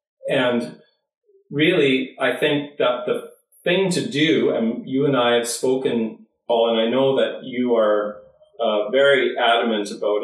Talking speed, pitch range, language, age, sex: 150 wpm, 115-160 Hz, English, 40-59, male